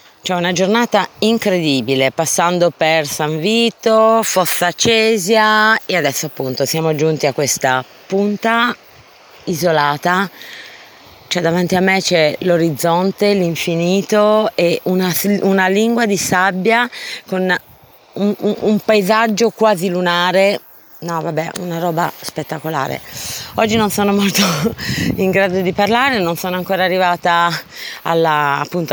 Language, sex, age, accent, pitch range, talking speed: Italian, female, 30-49, native, 155-190 Hz, 120 wpm